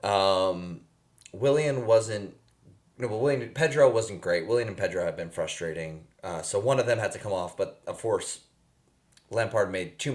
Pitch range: 95-140 Hz